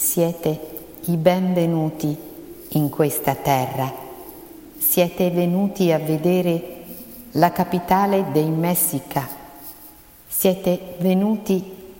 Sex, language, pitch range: female, Italian, 160-195 Hz